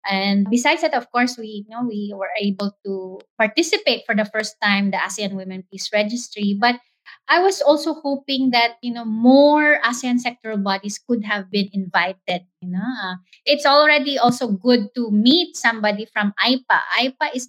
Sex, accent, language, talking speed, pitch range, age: female, Filipino, English, 180 wpm, 200-255 Hz, 20-39